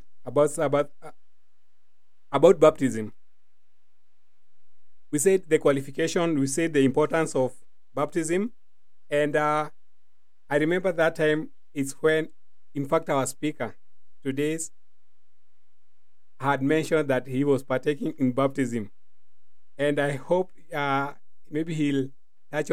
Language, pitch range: English, 135-165 Hz